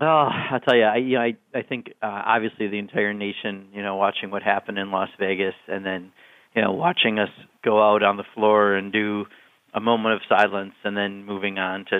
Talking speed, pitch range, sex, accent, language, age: 210 wpm, 100-115 Hz, male, American, English, 40-59